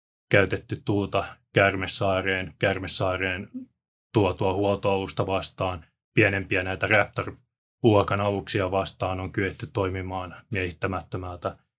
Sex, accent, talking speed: male, native, 75 wpm